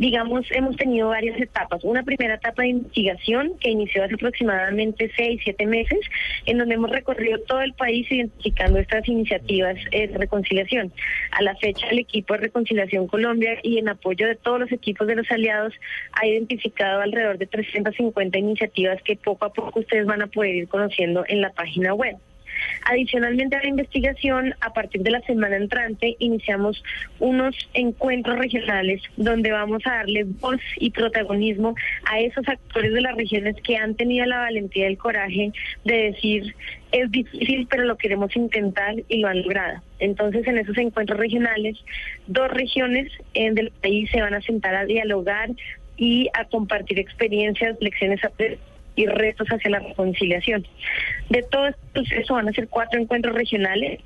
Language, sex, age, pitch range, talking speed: Spanish, female, 20-39, 205-240 Hz, 165 wpm